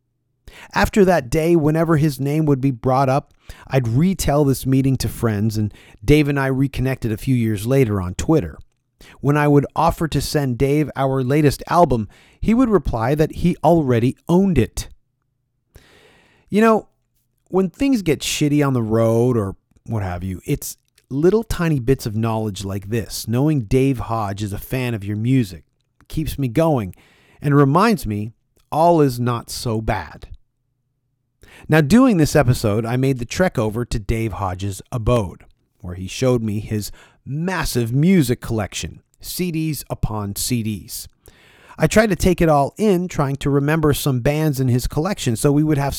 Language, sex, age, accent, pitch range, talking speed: English, male, 30-49, American, 115-150 Hz, 170 wpm